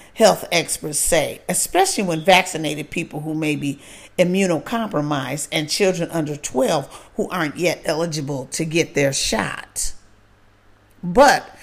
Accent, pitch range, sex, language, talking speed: American, 150-200 Hz, female, English, 125 wpm